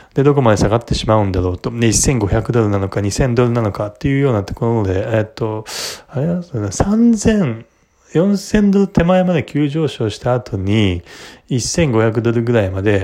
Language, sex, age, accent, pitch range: Japanese, male, 20-39, native, 100-130 Hz